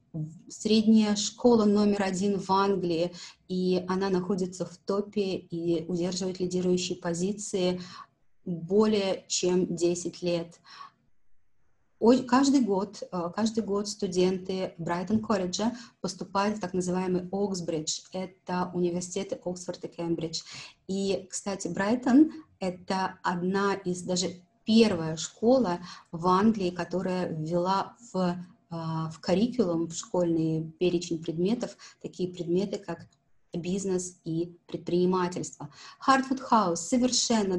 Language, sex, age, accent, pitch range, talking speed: Russian, female, 30-49, native, 175-205 Hz, 105 wpm